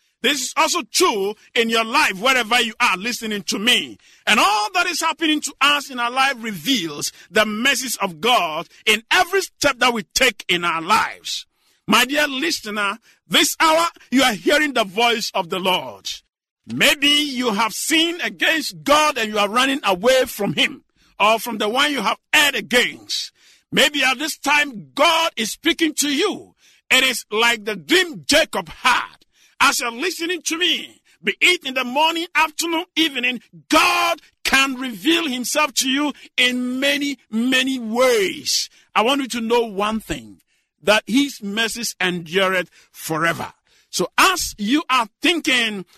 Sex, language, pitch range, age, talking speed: male, English, 215-300 Hz, 50-69, 165 wpm